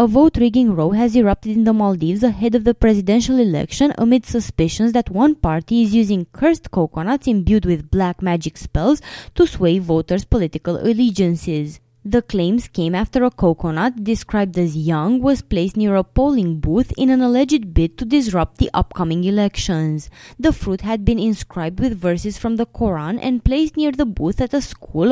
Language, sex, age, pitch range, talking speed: English, female, 20-39, 175-255 Hz, 175 wpm